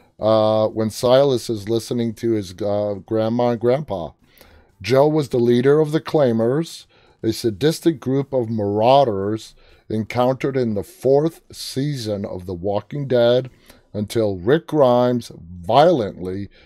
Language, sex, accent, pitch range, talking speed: English, male, American, 105-135 Hz, 130 wpm